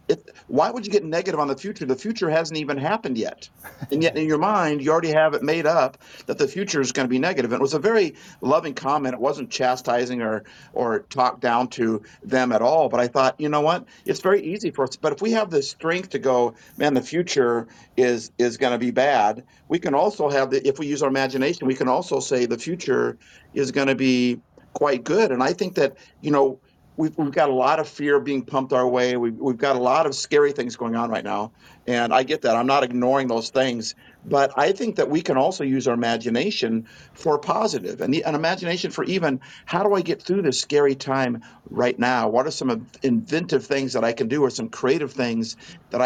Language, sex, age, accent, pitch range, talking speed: English, male, 50-69, American, 125-160 Hz, 230 wpm